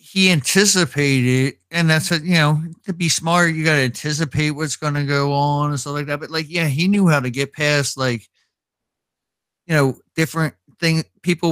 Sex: male